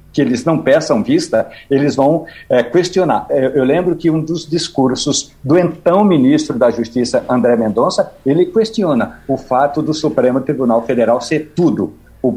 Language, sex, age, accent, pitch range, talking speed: Portuguese, male, 60-79, Brazilian, 130-165 Hz, 155 wpm